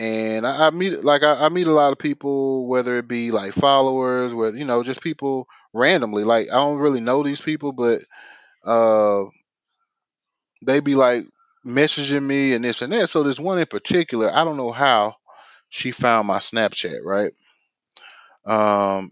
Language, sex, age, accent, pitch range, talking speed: English, male, 30-49, American, 115-155 Hz, 175 wpm